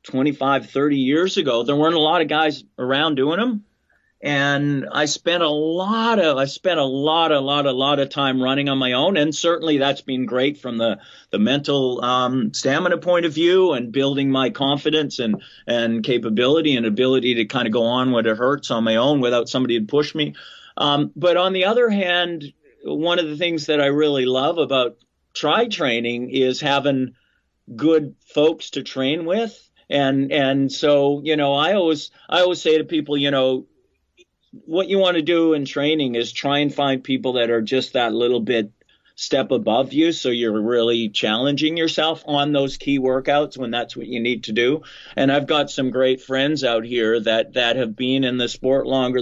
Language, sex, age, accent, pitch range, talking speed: English, male, 40-59, American, 125-155 Hz, 195 wpm